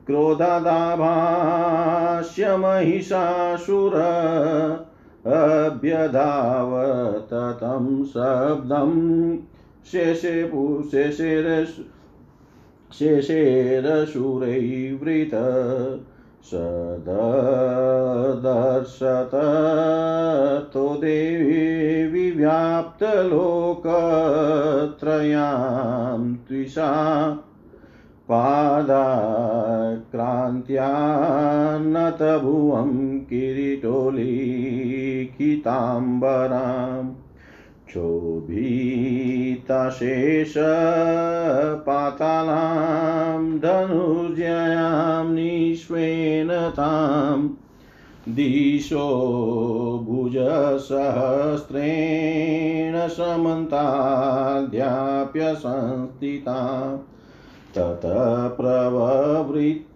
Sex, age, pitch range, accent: male, 40-59, 130-160 Hz, native